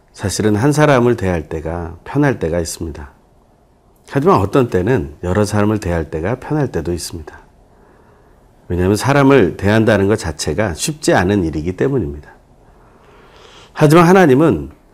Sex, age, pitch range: male, 40-59, 85-130 Hz